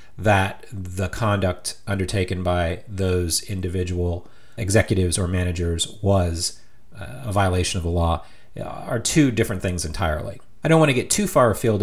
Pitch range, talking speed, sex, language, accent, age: 90-115 Hz, 145 wpm, male, English, American, 30-49